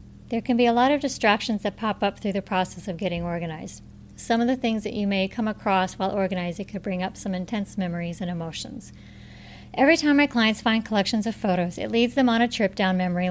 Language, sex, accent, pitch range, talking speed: English, female, American, 190-230 Hz, 230 wpm